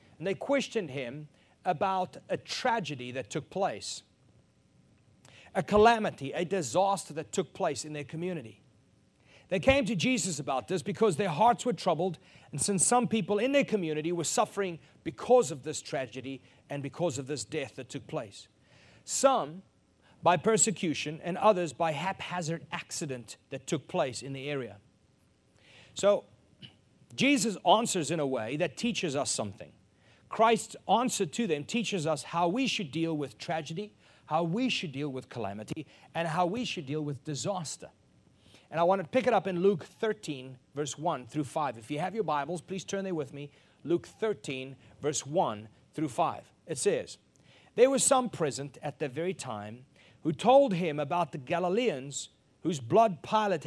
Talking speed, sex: 170 wpm, male